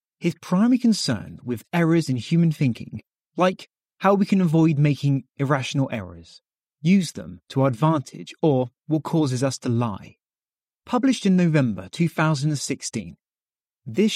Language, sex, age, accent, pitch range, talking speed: English, male, 30-49, British, 120-175 Hz, 135 wpm